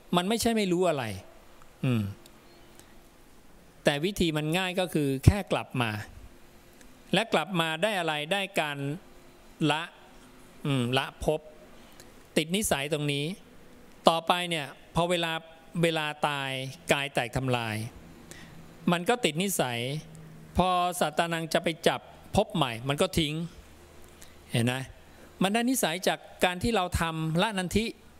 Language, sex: English, male